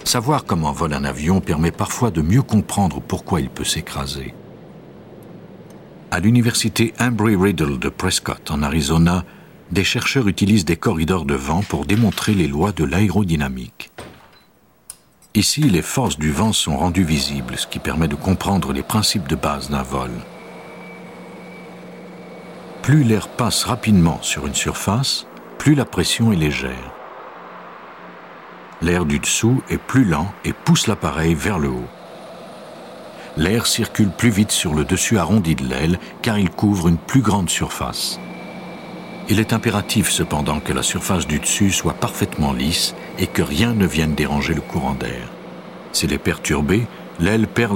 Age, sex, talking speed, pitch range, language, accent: 60-79, male, 150 wpm, 75-110 Hz, French, French